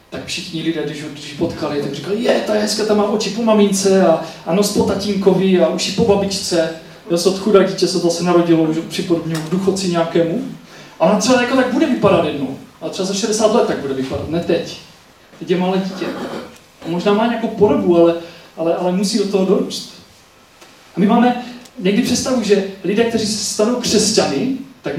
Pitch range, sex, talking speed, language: 170-215 Hz, male, 200 wpm, Czech